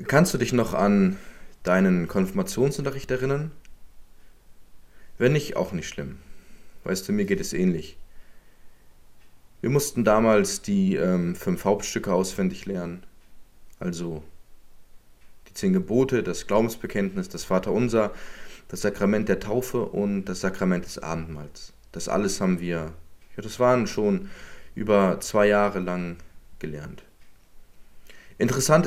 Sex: male